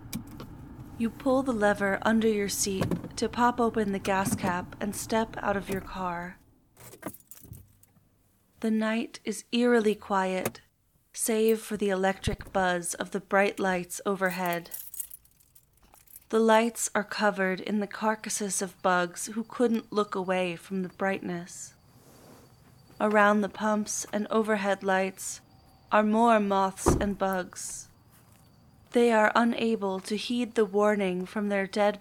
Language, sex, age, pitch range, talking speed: English, female, 30-49, 185-220 Hz, 135 wpm